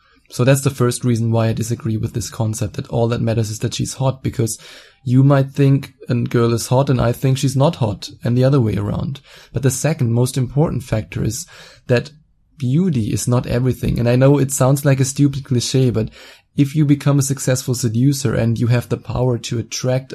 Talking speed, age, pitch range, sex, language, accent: 215 wpm, 20-39, 120-135 Hz, male, English, German